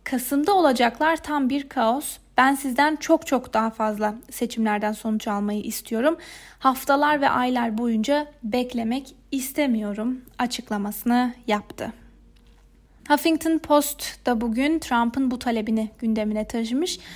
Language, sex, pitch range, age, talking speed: Turkish, female, 230-285 Hz, 30-49, 110 wpm